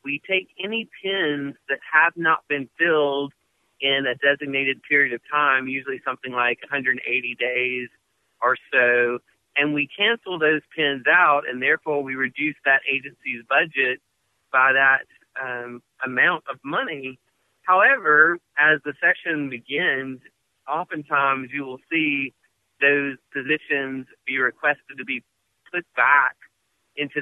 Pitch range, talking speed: 130-150 Hz, 130 wpm